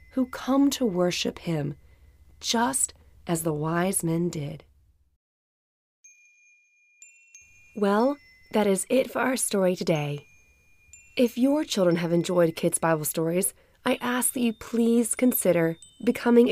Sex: female